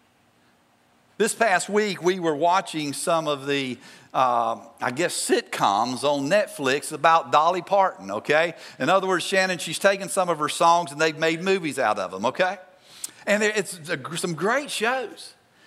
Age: 50-69